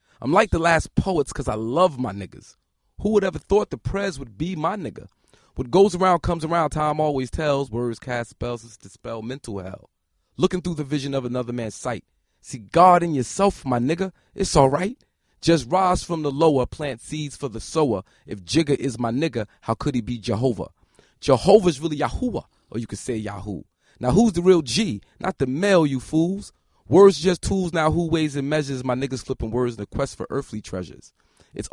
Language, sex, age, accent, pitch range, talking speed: English, male, 30-49, American, 115-160 Hz, 205 wpm